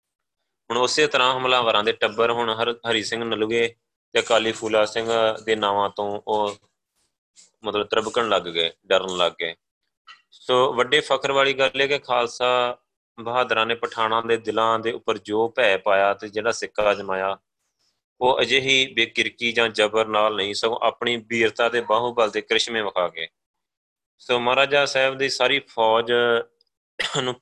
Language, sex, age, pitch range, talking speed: Punjabi, male, 30-49, 105-130 Hz, 155 wpm